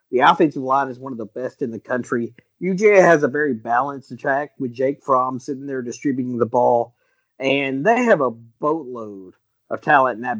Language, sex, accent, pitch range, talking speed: English, male, American, 120-160 Hz, 195 wpm